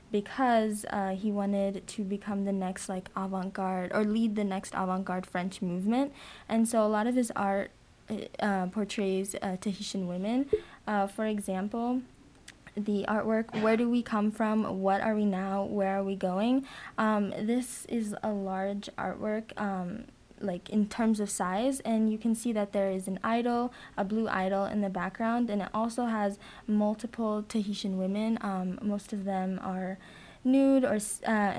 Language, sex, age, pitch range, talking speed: English, female, 10-29, 195-225 Hz, 165 wpm